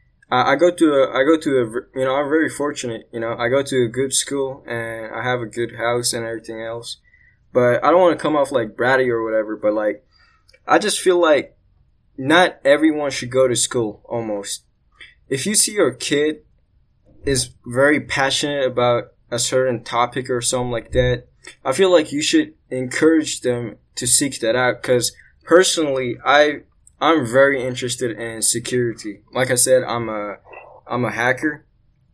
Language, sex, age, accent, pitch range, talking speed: English, male, 10-29, American, 120-140 Hz, 180 wpm